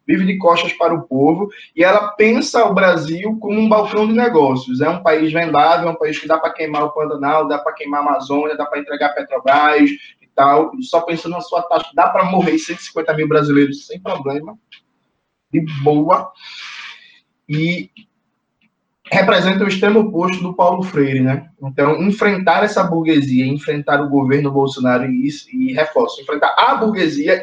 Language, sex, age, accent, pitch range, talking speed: Portuguese, male, 20-39, Brazilian, 145-185 Hz, 170 wpm